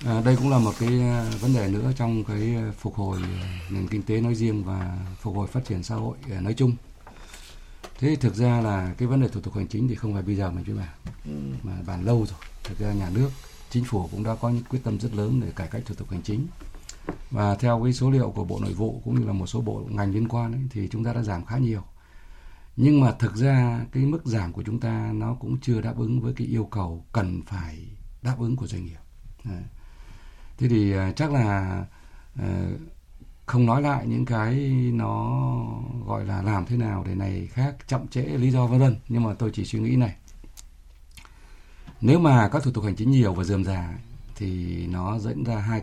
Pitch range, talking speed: 95-120 Hz, 225 wpm